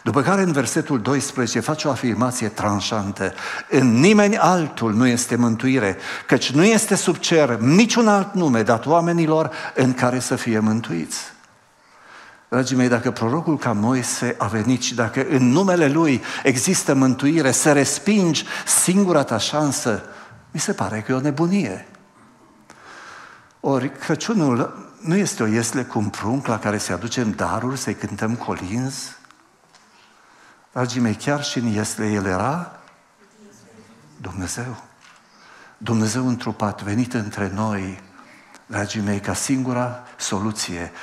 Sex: male